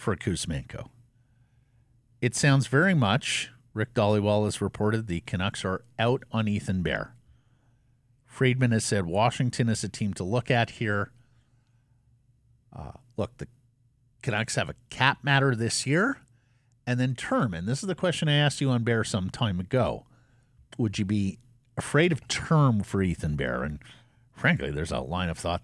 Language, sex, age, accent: English, male, 50-69, American